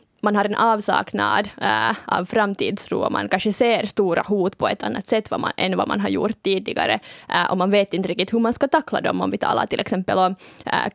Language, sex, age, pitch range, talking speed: Swedish, female, 20-39, 190-225 Hz, 230 wpm